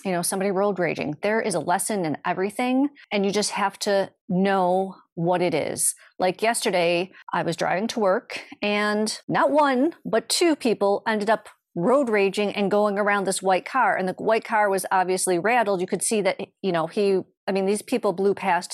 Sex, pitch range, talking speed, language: female, 180-220 Hz, 200 wpm, English